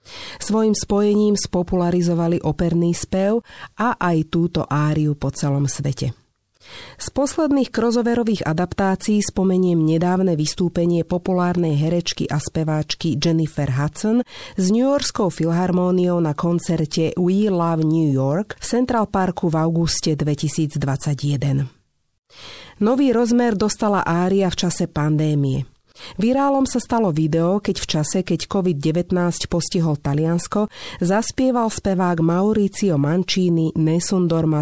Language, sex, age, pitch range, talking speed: Slovak, female, 40-59, 155-200 Hz, 110 wpm